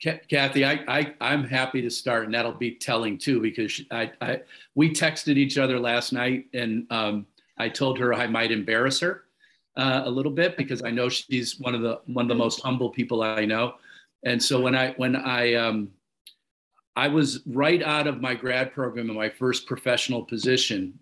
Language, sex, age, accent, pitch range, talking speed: English, male, 50-69, American, 115-130 Hz, 195 wpm